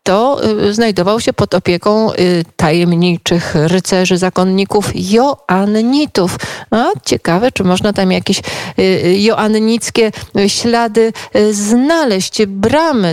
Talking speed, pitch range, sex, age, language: 80 wpm, 190-235 Hz, female, 40-59, Polish